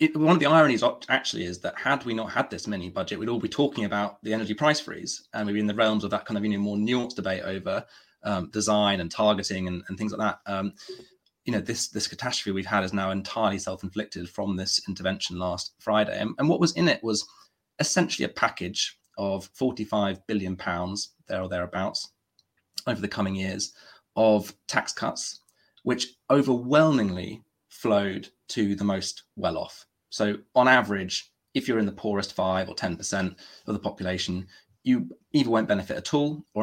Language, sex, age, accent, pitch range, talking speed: English, male, 30-49, British, 95-115 Hz, 185 wpm